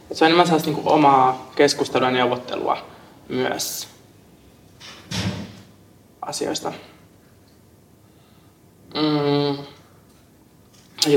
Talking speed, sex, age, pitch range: 55 wpm, male, 20-39, 120-135 Hz